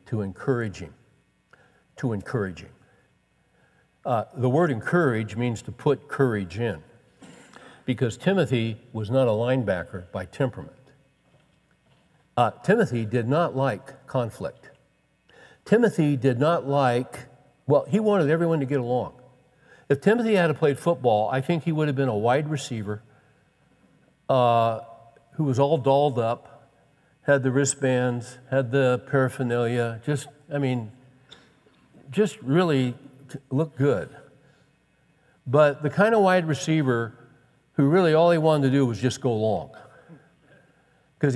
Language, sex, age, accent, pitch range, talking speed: English, male, 60-79, American, 120-150 Hz, 135 wpm